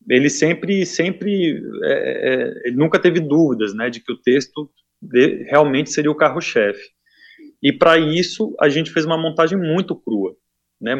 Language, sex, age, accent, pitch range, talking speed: Portuguese, male, 20-39, Brazilian, 120-175 Hz, 140 wpm